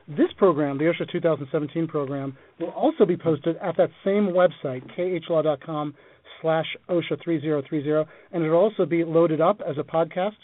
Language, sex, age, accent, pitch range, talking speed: English, male, 40-59, American, 150-170 Hz, 155 wpm